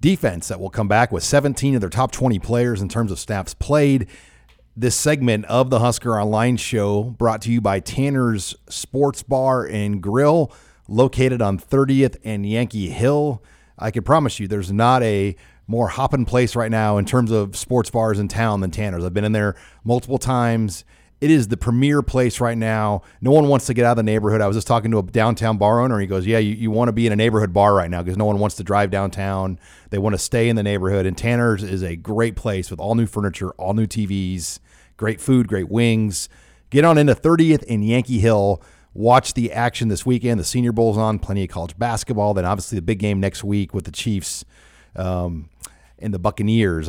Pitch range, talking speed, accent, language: 95-120 Hz, 215 wpm, American, English